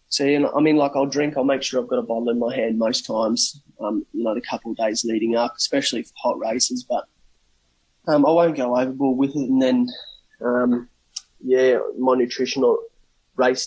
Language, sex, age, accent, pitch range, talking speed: English, male, 20-39, Australian, 115-140 Hz, 220 wpm